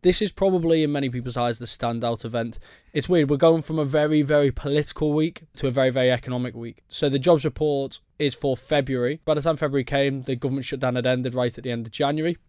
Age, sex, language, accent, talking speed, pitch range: 20-39, male, English, British, 235 wpm, 125-145 Hz